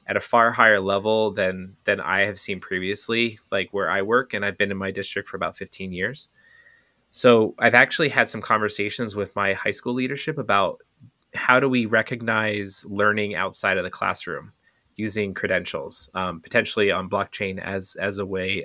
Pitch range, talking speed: 100-115 Hz, 180 wpm